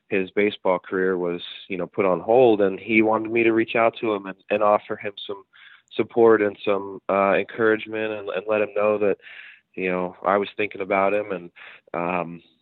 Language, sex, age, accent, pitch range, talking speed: English, male, 20-39, American, 95-110 Hz, 205 wpm